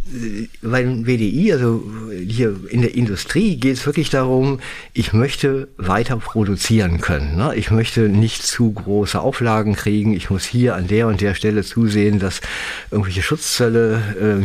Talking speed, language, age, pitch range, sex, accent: 155 wpm, German, 50-69, 100-125 Hz, male, German